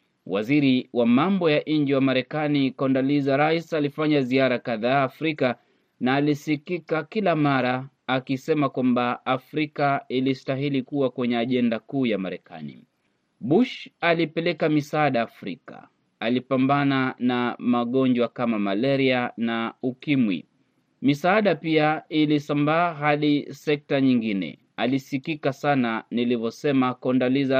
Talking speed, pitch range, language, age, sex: 105 wpm, 130-155 Hz, Swahili, 30-49, male